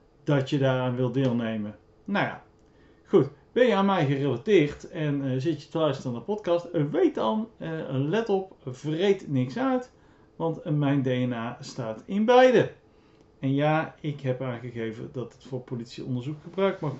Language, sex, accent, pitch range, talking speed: Dutch, male, Dutch, 130-170 Hz, 165 wpm